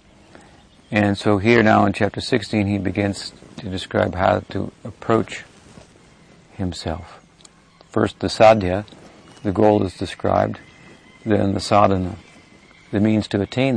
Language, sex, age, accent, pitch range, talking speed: English, male, 50-69, American, 100-110 Hz, 125 wpm